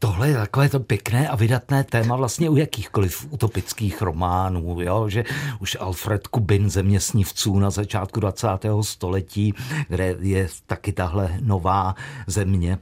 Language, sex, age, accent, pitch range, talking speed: Czech, male, 50-69, native, 100-140 Hz, 140 wpm